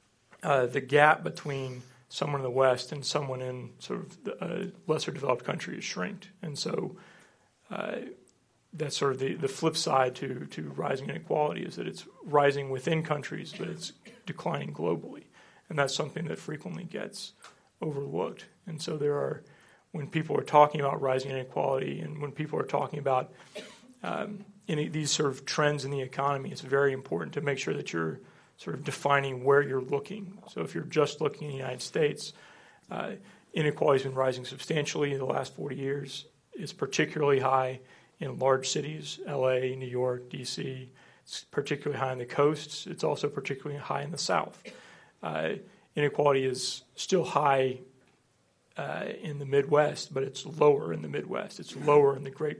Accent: American